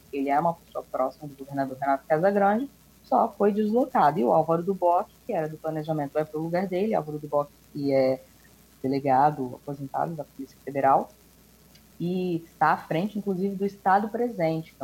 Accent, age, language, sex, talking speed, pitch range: Brazilian, 20-39, Portuguese, female, 185 wpm, 150-200 Hz